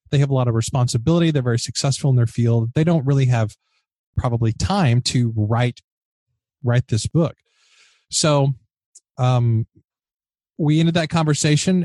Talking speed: 145 wpm